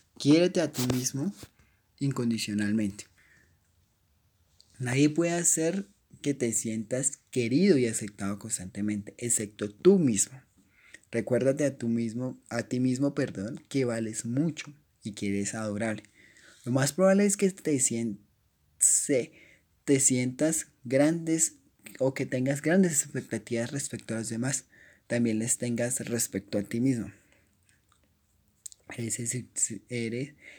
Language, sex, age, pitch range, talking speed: Spanish, male, 20-39, 105-135 Hz, 120 wpm